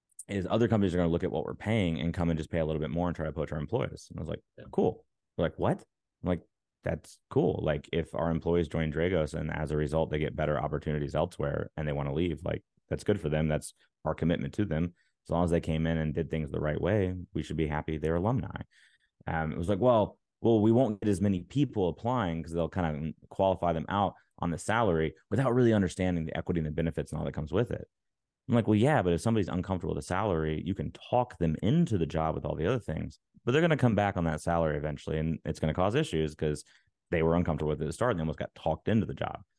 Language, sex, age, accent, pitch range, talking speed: English, male, 20-39, American, 80-95 Hz, 270 wpm